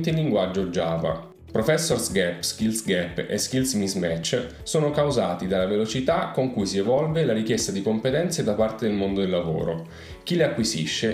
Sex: male